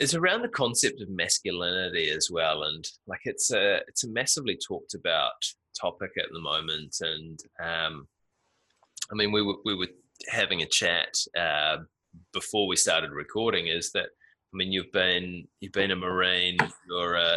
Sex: male